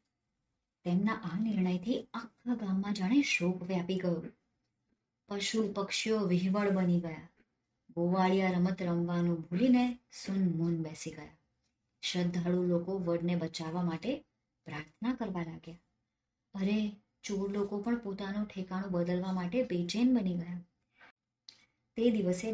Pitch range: 155-205 Hz